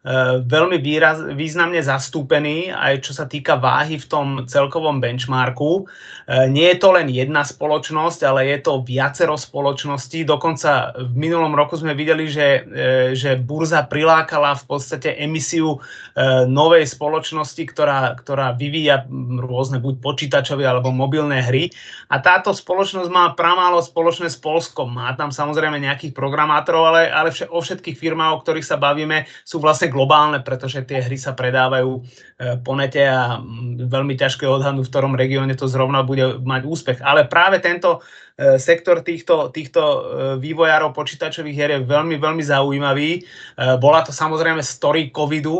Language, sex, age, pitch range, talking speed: Czech, male, 30-49, 130-160 Hz, 145 wpm